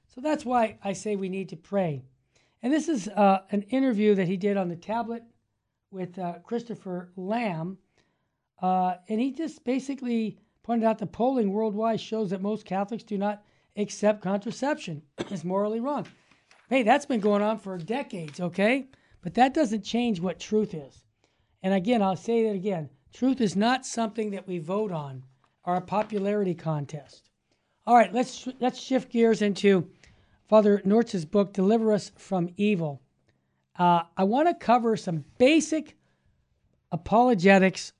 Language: English